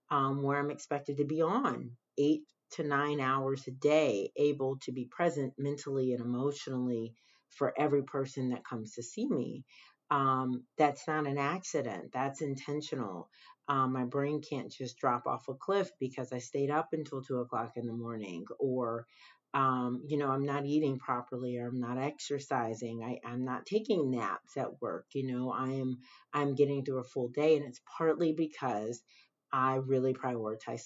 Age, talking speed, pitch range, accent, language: 30-49, 175 wpm, 125-150 Hz, American, English